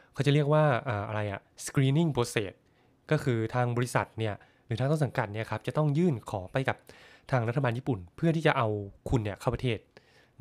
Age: 20-39